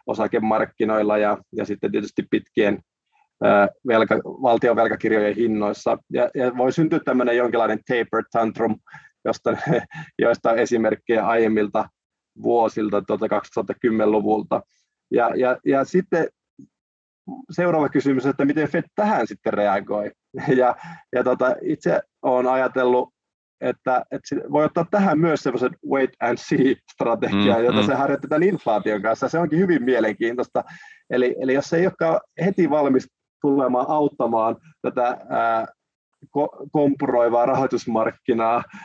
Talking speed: 115 wpm